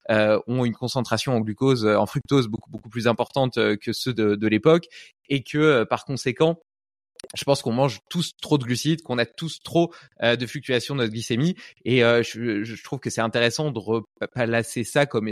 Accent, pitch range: French, 115-145 Hz